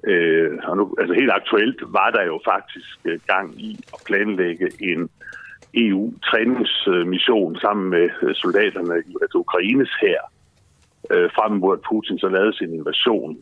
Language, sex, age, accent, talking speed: Danish, male, 60-79, native, 130 wpm